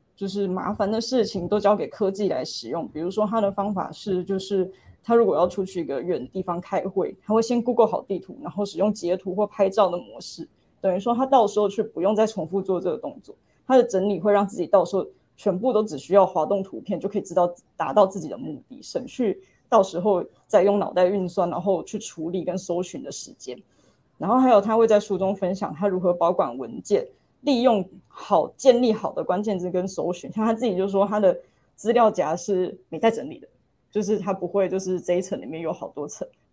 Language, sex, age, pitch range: Chinese, female, 20-39, 185-215 Hz